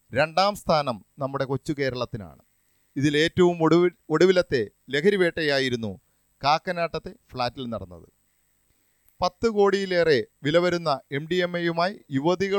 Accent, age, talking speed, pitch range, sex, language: native, 40-59, 75 wpm, 135-175 Hz, male, Malayalam